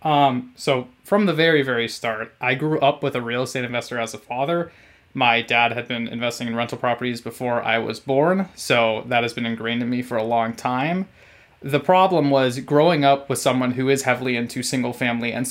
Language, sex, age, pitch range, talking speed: English, male, 20-39, 120-140 Hz, 215 wpm